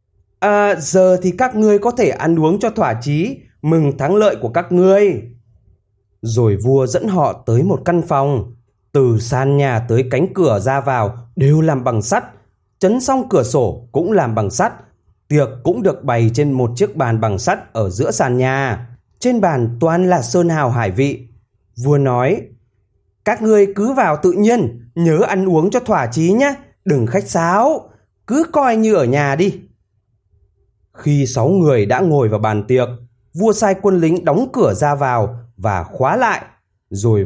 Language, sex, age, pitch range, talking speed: Vietnamese, male, 20-39, 115-180 Hz, 180 wpm